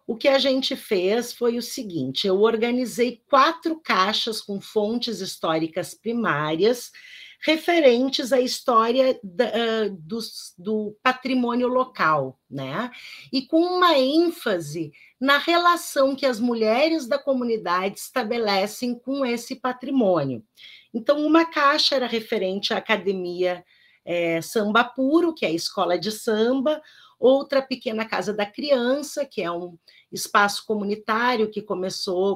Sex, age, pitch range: female, 40-59, 190-255 Hz